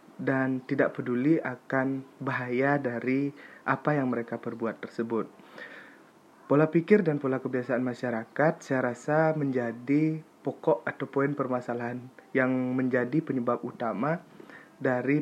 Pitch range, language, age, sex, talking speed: 120-140 Hz, Indonesian, 20-39, male, 115 wpm